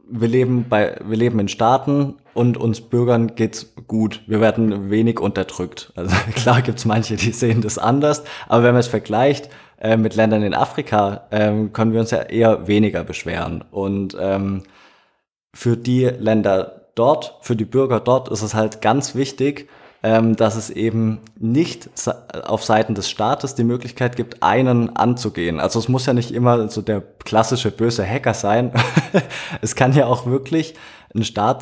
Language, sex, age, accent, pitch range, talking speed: German, male, 20-39, German, 100-125 Hz, 170 wpm